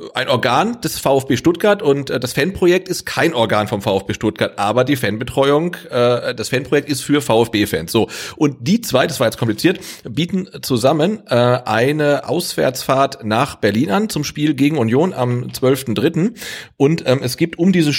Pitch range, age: 120-155 Hz, 40-59